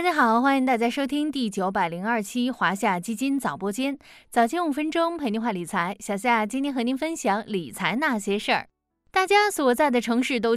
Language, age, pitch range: Chinese, 20-39, 220-300 Hz